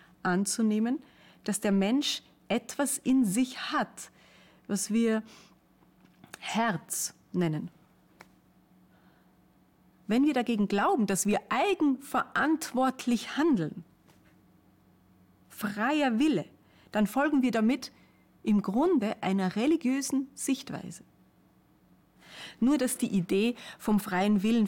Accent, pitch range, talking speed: German, 185-255 Hz, 90 wpm